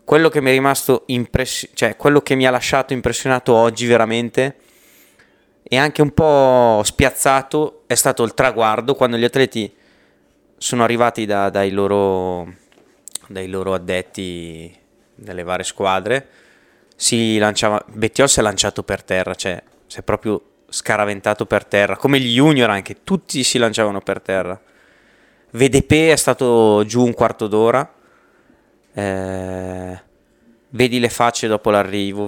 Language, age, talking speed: Italian, 20-39, 140 wpm